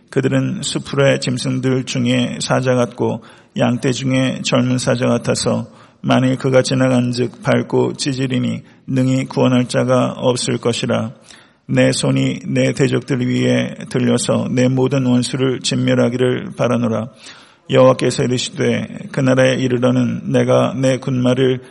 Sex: male